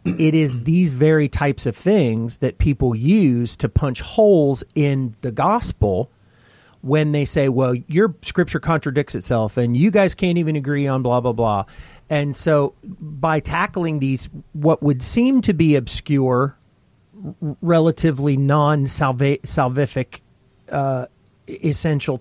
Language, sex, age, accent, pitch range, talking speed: English, male, 40-59, American, 125-150 Hz, 130 wpm